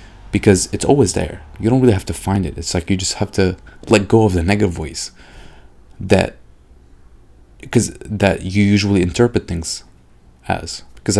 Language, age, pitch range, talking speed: English, 30-49, 90-120 Hz, 170 wpm